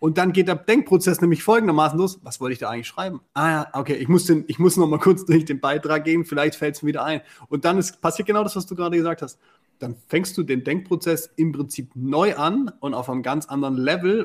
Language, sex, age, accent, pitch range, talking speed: German, male, 30-49, German, 140-180 Hz, 255 wpm